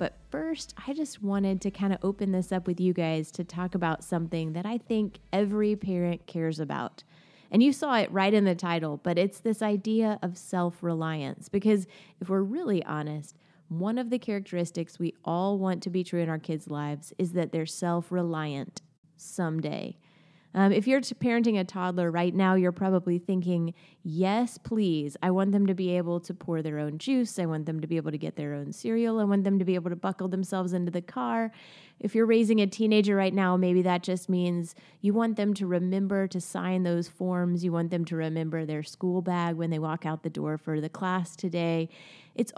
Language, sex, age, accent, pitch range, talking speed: English, female, 20-39, American, 170-200 Hz, 210 wpm